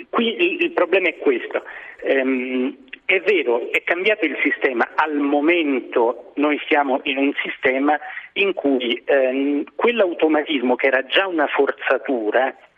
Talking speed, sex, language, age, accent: 135 wpm, male, Italian, 40-59, native